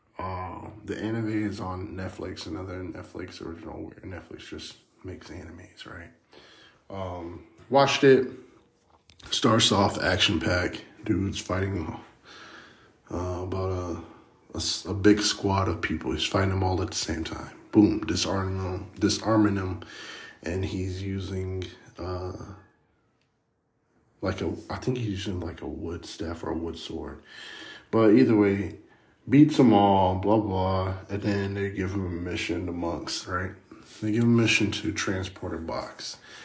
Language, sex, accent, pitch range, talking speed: English, male, American, 90-105 Hz, 150 wpm